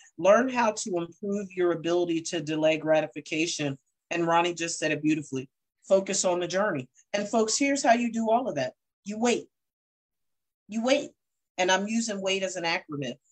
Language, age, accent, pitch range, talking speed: English, 40-59, American, 145-205 Hz, 175 wpm